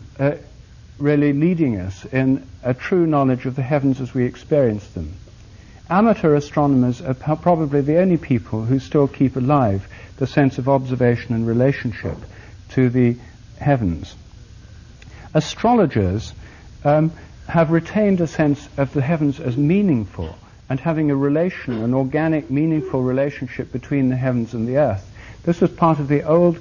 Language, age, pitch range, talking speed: English, 60-79, 110-155 Hz, 150 wpm